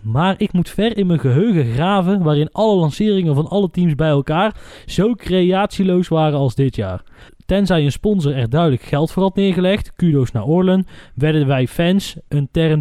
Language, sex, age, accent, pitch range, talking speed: Dutch, male, 20-39, Dutch, 140-195 Hz, 185 wpm